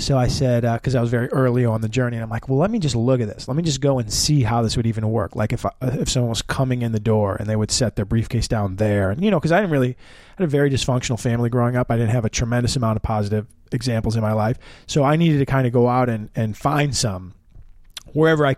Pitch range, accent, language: 115-140 Hz, American, English